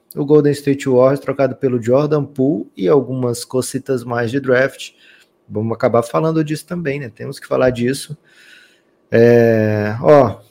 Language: Portuguese